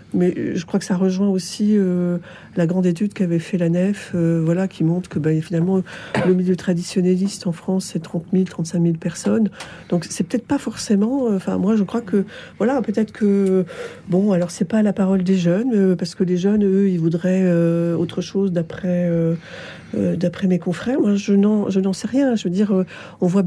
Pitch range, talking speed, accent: 175-205 Hz, 215 wpm, French